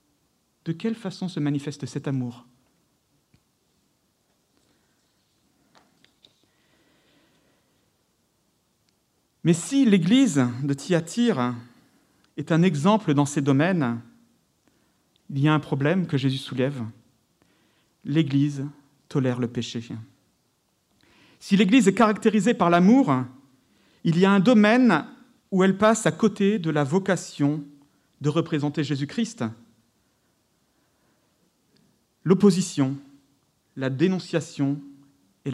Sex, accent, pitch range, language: male, French, 130-185 Hz, French